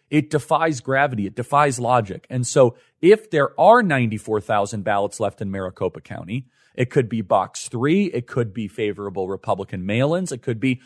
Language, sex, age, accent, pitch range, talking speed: English, male, 40-59, American, 120-145 Hz, 170 wpm